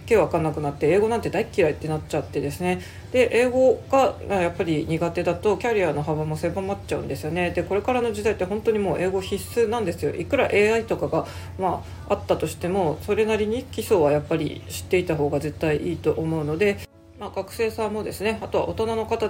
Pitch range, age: 155-205 Hz, 40-59